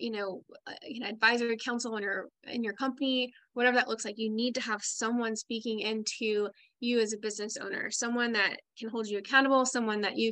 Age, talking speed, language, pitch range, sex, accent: 10-29, 215 wpm, English, 215-255 Hz, female, American